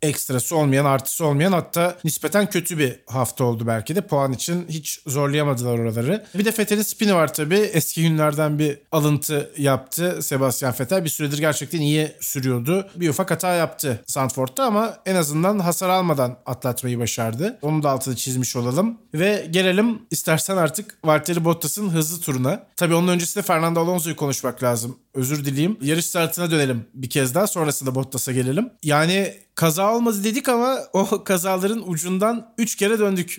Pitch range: 140-190 Hz